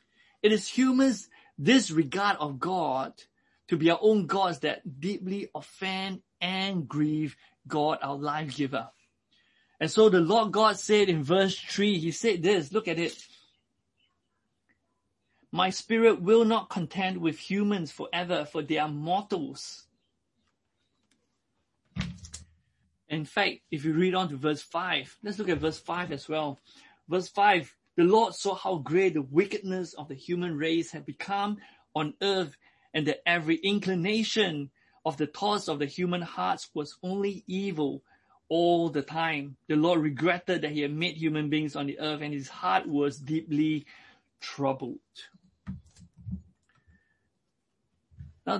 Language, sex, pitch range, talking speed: English, male, 150-195 Hz, 145 wpm